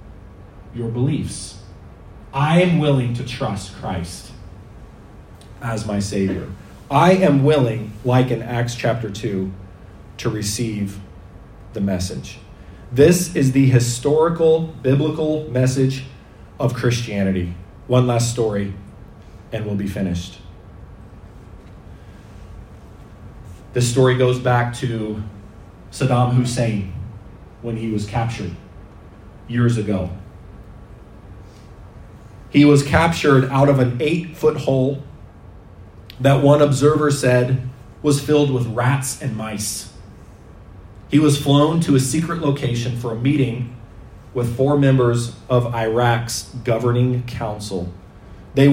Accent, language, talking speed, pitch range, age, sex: American, English, 105 wpm, 100-135 Hz, 30-49, male